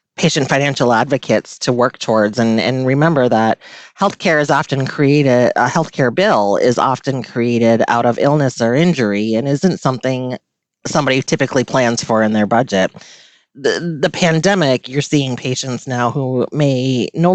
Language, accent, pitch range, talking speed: English, American, 120-160 Hz, 155 wpm